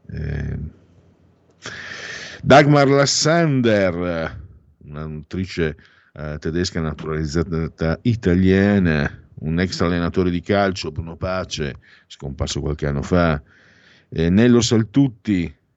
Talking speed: 85 wpm